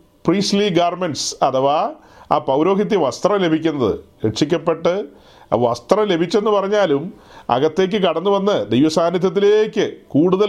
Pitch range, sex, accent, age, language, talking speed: 155-190 Hz, male, native, 40-59, Malayalam, 95 wpm